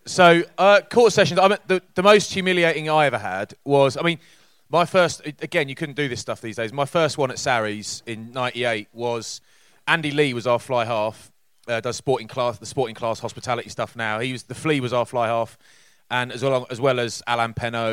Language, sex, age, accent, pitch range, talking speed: English, male, 30-49, British, 110-135 Hz, 220 wpm